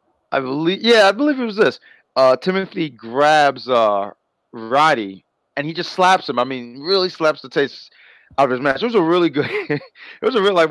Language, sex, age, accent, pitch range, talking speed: English, male, 30-49, American, 105-155 Hz, 205 wpm